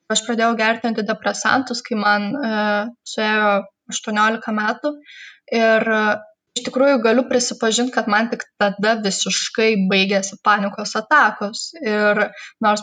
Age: 10-29